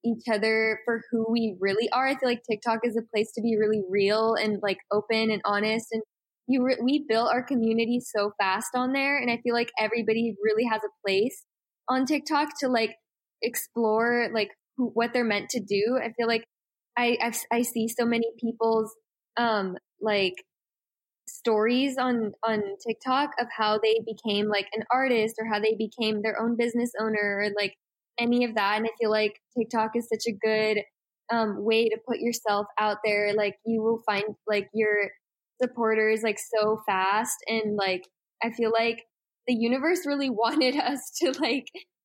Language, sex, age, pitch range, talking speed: English, female, 10-29, 215-235 Hz, 185 wpm